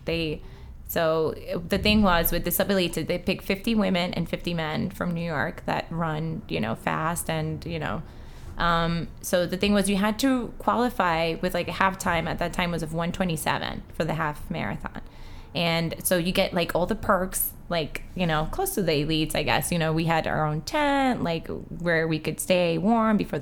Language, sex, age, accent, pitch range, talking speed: English, female, 20-39, American, 155-190 Hz, 210 wpm